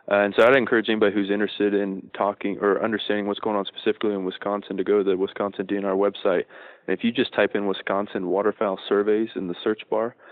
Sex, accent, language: male, American, English